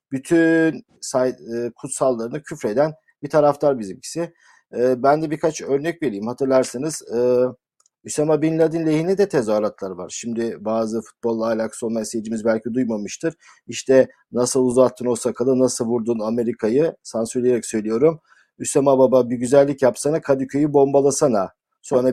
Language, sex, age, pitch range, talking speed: Turkish, male, 50-69, 120-155 Hz, 135 wpm